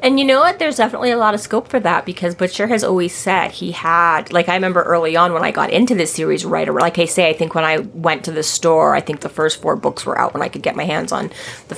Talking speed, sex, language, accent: 300 wpm, female, English, American